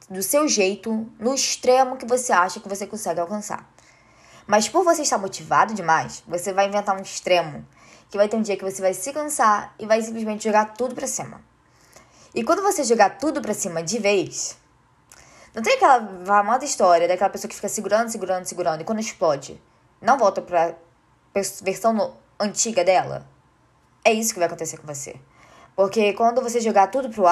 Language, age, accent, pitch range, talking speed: Portuguese, 10-29, Brazilian, 175-235 Hz, 180 wpm